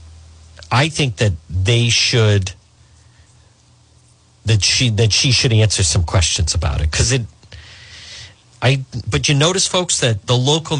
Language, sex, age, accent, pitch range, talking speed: English, male, 50-69, American, 95-130 Hz, 140 wpm